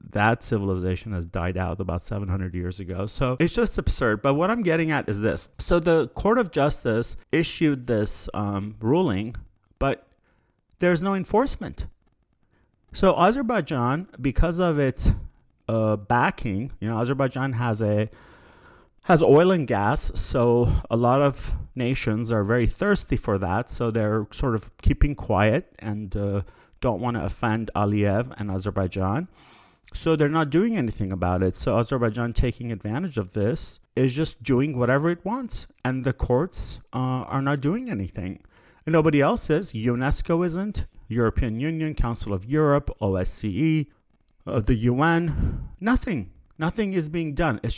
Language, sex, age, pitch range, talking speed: English, male, 30-49, 105-155 Hz, 150 wpm